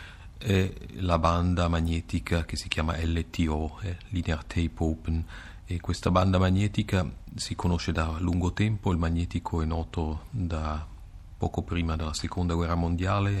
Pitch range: 80-95 Hz